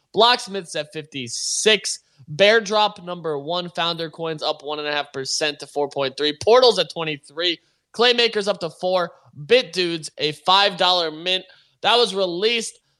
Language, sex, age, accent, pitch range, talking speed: English, male, 20-39, American, 155-200 Hz, 130 wpm